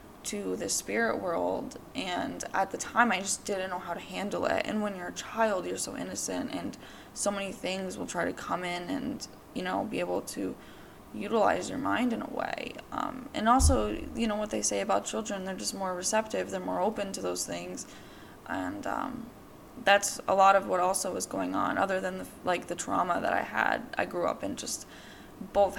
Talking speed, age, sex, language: 210 wpm, 20-39, female, English